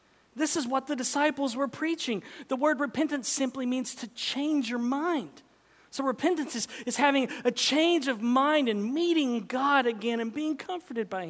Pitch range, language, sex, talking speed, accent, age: 180-275 Hz, English, male, 175 wpm, American, 40-59